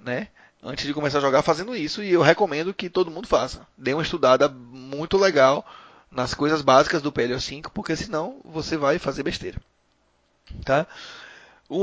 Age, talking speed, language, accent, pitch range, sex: 20-39, 165 wpm, Portuguese, Brazilian, 145-180 Hz, male